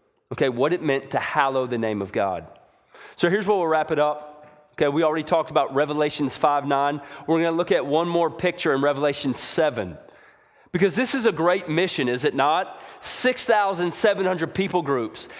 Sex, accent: male, American